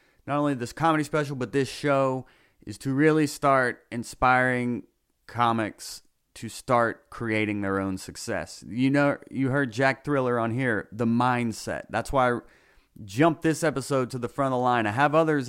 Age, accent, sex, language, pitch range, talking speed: 30-49, American, male, English, 105-135 Hz, 175 wpm